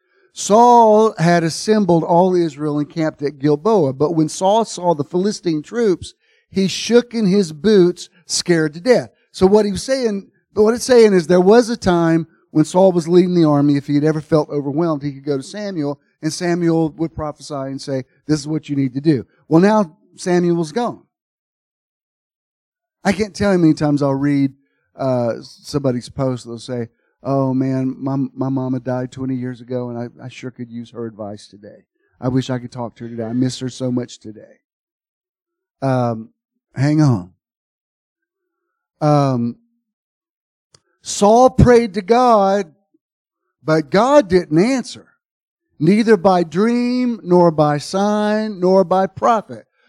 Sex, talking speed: male, 165 wpm